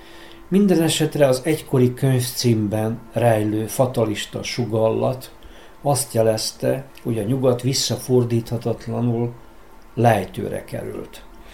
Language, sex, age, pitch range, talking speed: Hungarian, male, 60-79, 115-135 Hz, 85 wpm